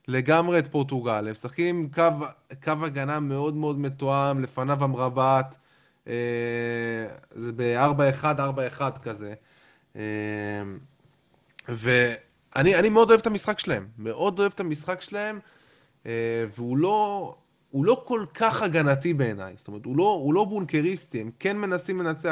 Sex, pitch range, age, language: male, 130-170 Hz, 20-39, Hebrew